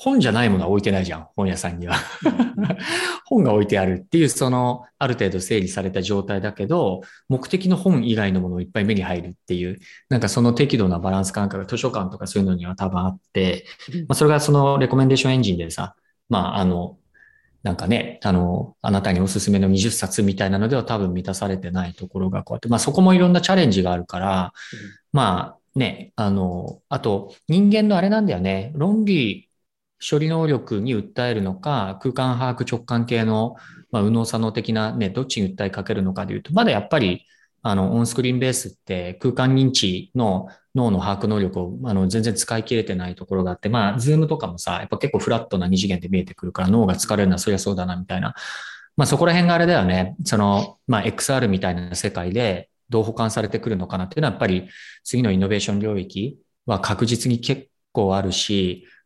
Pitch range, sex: 95-130 Hz, male